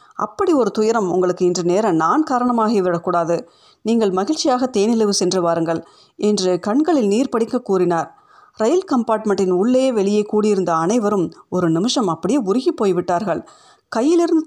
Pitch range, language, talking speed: 185-255 Hz, Tamil, 125 wpm